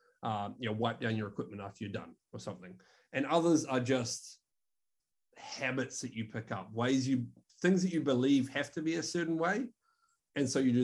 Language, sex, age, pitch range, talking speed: English, male, 30-49, 115-145 Hz, 205 wpm